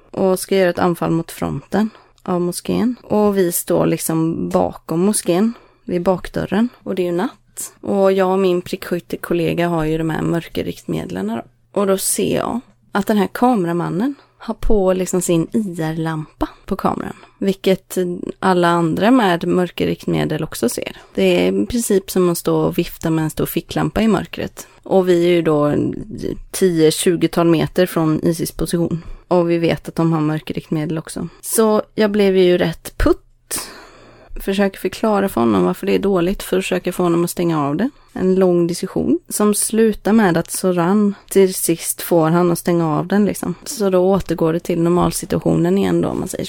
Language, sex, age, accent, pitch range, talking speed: Swedish, female, 20-39, native, 170-195 Hz, 180 wpm